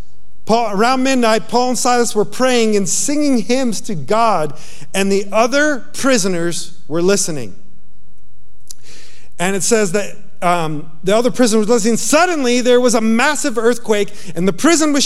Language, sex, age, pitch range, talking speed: English, male, 40-59, 150-220 Hz, 150 wpm